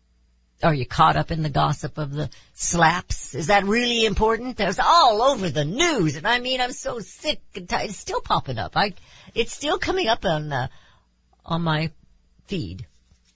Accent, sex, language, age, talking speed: American, female, English, 60-79, 185 wpm